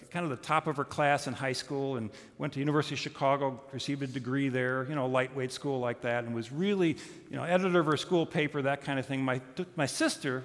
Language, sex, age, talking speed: English, male, 50-69, 245 wpm